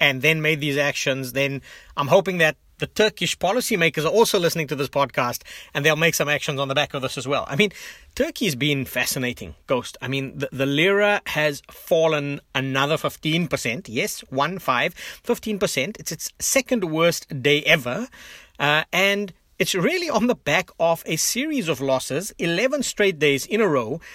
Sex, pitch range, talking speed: male, 140-175 Hz, 180 wpm